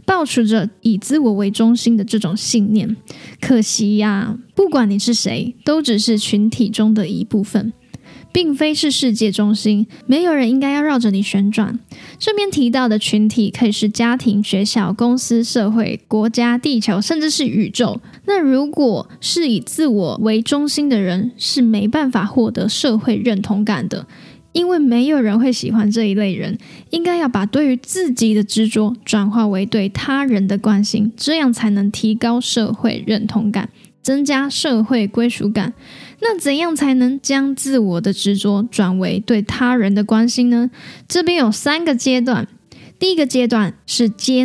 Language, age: Chinese, 10-29